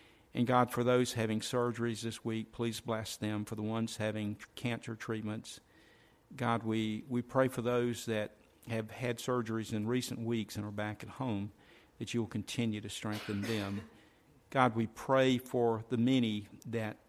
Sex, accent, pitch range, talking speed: male, American, 110-120 Hz, 170 wpm